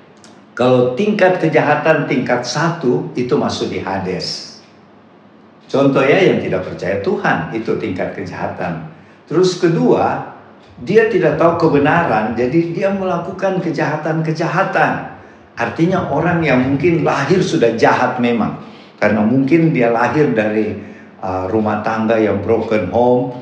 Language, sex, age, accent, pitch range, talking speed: Indonesian, male, 50-69, native, 115-165 Hz, 115 wpm